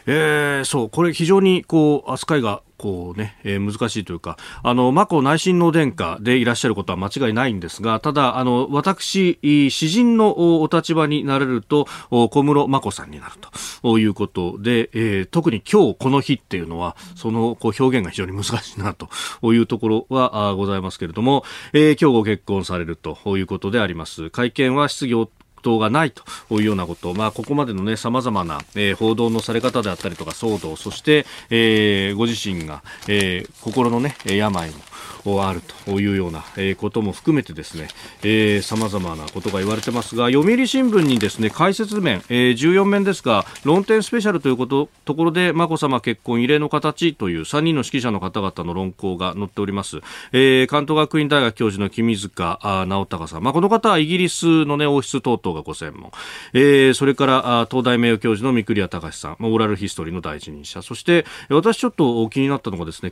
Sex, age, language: male, 40-59, Japanese